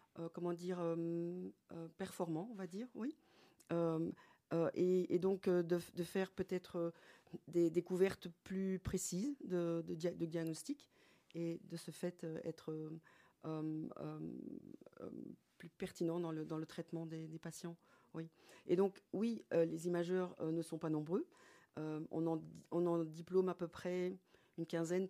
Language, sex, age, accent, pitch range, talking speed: French, female, 40-59, French, 165-190 Hz, 165 wpm